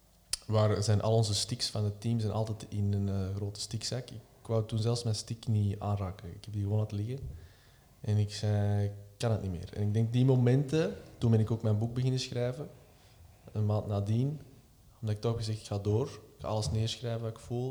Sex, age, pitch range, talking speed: male, 20-39, 105-120 Hz, 225 wpm